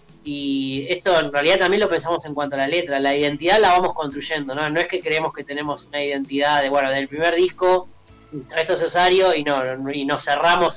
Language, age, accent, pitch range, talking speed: Spanish, 20-39, Argentinian, 145-180 Hz, 215 wpm